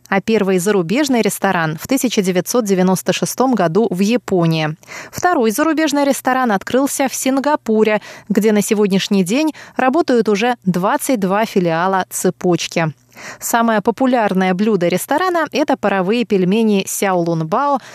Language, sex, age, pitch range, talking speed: Russian, female, 20-39, 185-245 Hz, 105 wpm